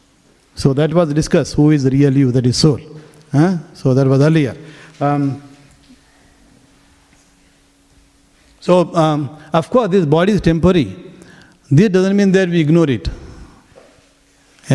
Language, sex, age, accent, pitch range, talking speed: English, male, 50-69, Indian, 140-175 Hz, 140 wpm